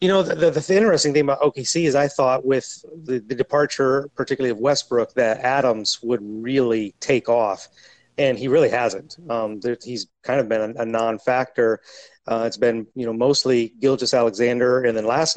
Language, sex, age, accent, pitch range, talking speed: English, male, 30-49, American, 120-145 Hz, 190 wpm